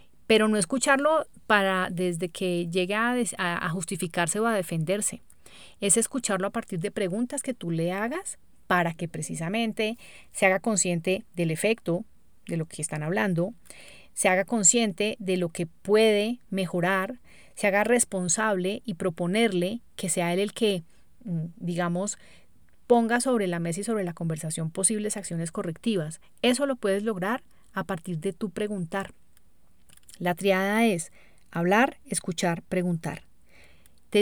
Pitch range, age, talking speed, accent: 175-225 Hz, 30-49, 145 wpm, Colombian